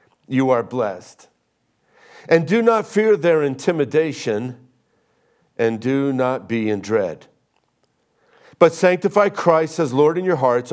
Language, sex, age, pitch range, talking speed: English, male, 50-69, 125-165 Hz, 130 wpm